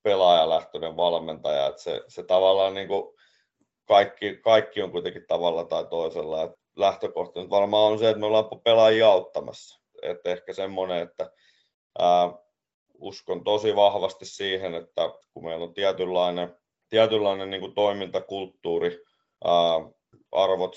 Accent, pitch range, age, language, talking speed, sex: native, 85-120 Hz, 30-49, Finnish, 120 wpm, male